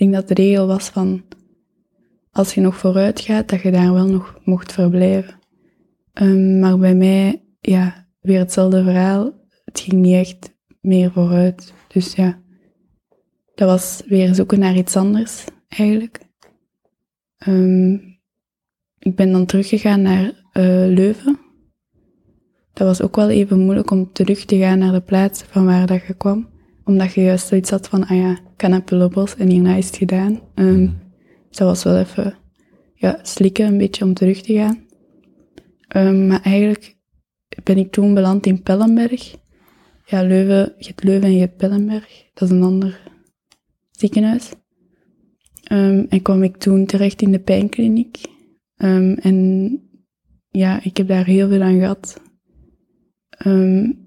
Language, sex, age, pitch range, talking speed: Dutch, female, 10-29, 185-200 Hz, 150 wpm